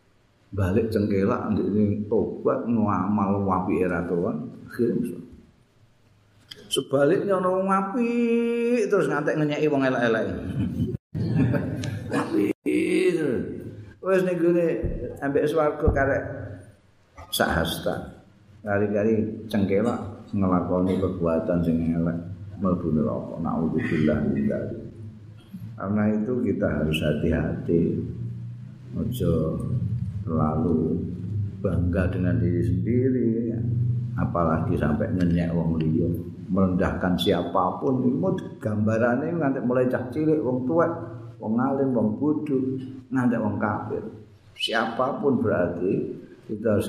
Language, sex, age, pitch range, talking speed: Indonesian, male, 50-69, 90-120 Hz, 65 wpm